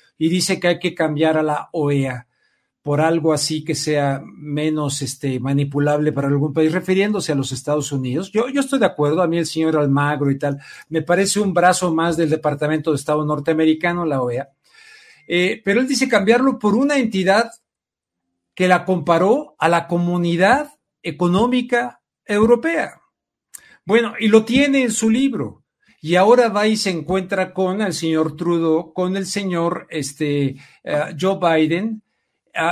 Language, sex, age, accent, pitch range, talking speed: Spanish, male, 50-69, Mexican, 155-200 Hz, 165 wpm